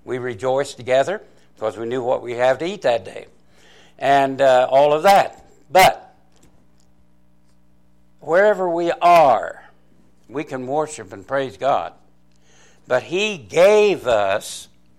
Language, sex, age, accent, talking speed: English, male, 60-79, American, 130 wpm